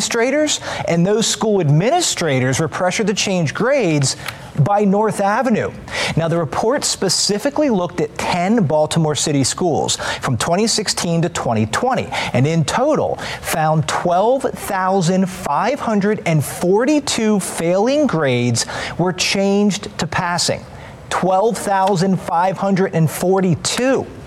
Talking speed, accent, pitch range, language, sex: 95 wpm, American, 145-205 Hz, English, male